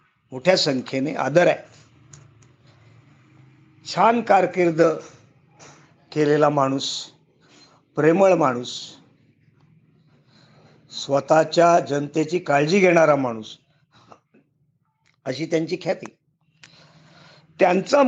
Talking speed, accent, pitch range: 65 wpm, native, 150-205 Hz